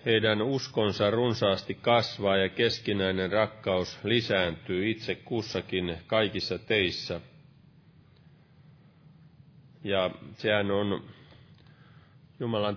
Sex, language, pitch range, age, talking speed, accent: male, Finnish, 100-140 Hz, 30-49, 75 wpm, native